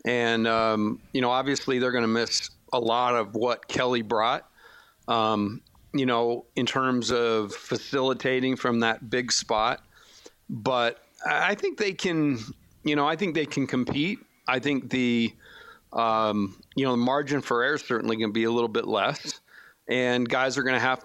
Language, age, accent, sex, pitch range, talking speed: English, 40-59, American, male, 115-135 Hz, 180 wpm